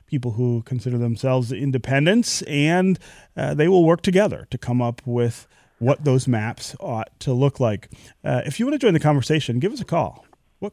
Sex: male